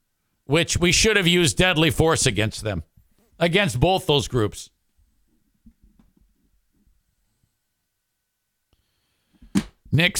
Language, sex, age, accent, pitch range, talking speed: English, male, 60-79, American, 105-165 Hz, 80 wpm